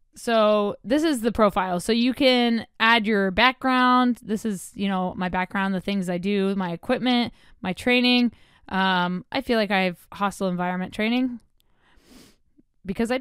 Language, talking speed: English, 165 wpm